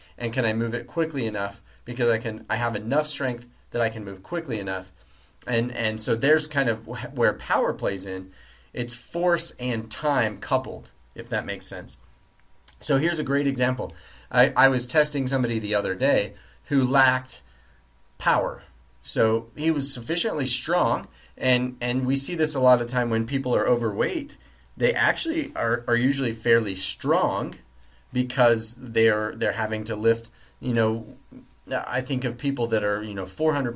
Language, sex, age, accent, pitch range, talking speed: English, male, 30-49, American, 100-130 Hz, 170 wpm